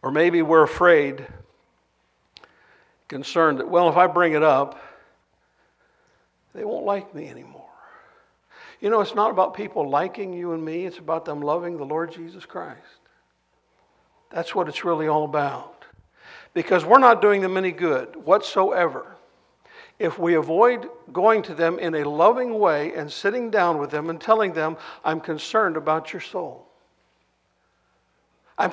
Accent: American